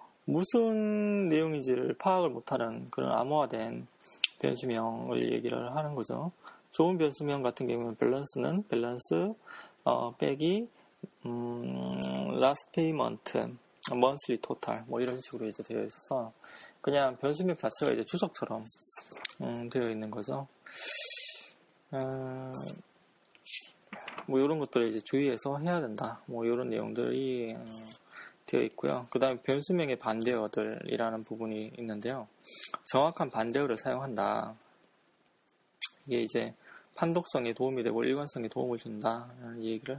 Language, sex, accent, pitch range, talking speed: English, male, Korean, 115-155 Hz, 100 wpm